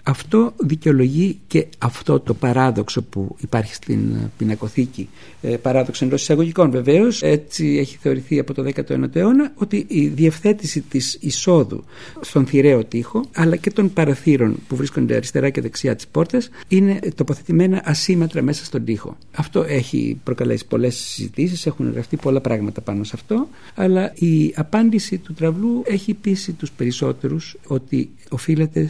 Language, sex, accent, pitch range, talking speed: Greek, male, native, 125-170 Hz, 145 wpm